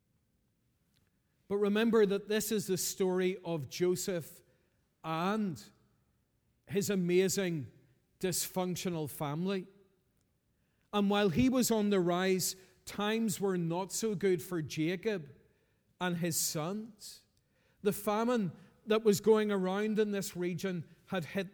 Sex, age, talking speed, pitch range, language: male, 40-59, 115 wpm, 180-210 Hz, English